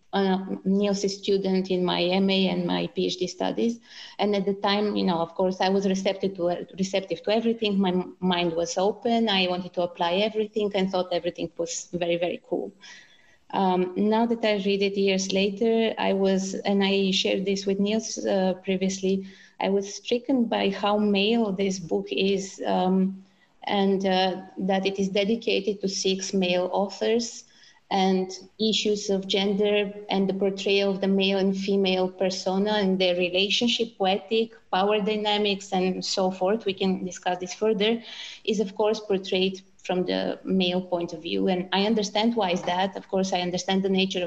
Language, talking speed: English, 175 wpm